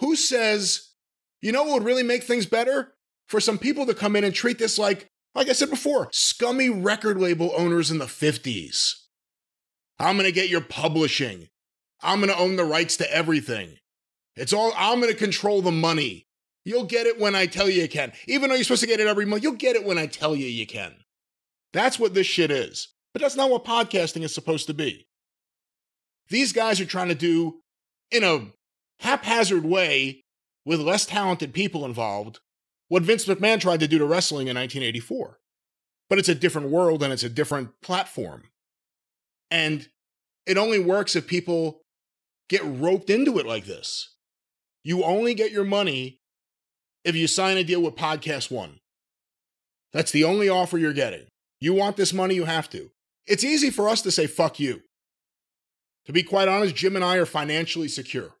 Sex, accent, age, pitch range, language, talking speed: male, American, 30-49, 160-220 Hz, English, 190 wpm